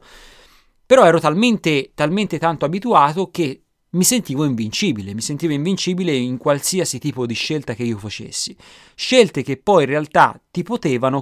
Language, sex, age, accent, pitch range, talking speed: Italian, male, 30-49, native, 120-165 Hz, 150 wpm